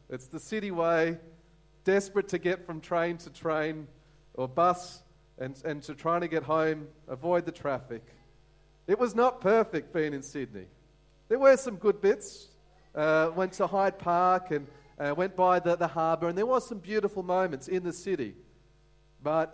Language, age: English, 40-59